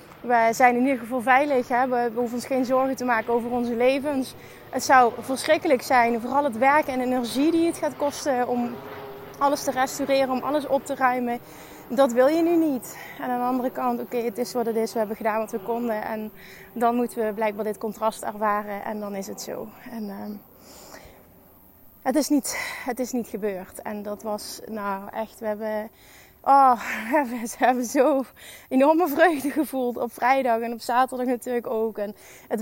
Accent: Dutch